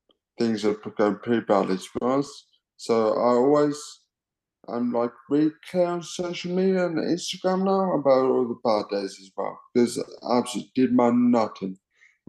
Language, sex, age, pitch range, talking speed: English, male, 20-39, 115-165 Hz, 160 wpm